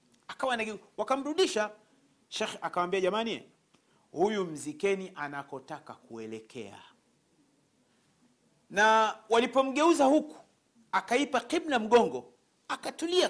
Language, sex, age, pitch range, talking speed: Swahili, male, 40-59, 165-235 Hz, 75 wpm